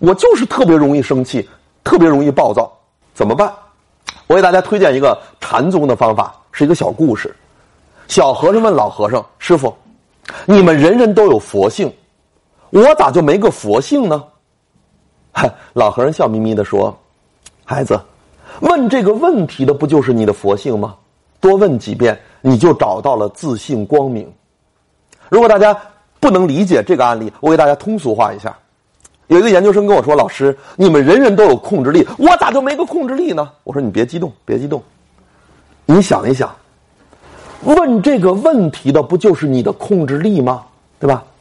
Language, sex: Chinese, male